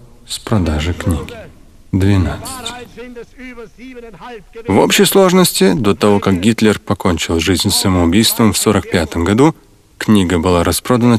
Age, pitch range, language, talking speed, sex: 40-59, 100-140 Hz, Russian, 105 wpm, male